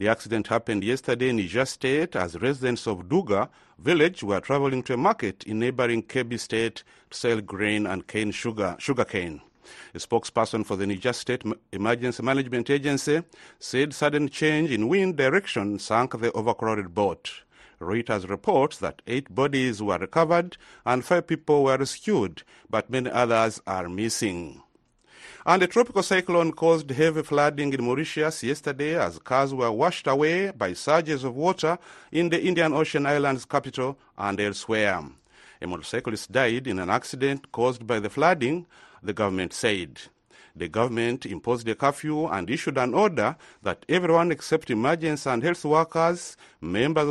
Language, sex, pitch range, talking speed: English, male, 110-155 Hz, 155 wpm